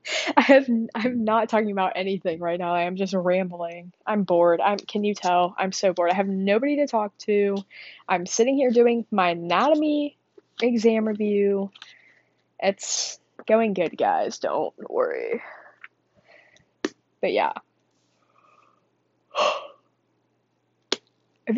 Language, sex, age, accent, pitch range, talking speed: English, female, 20-39, American, 190-245 Hz, 130 wpm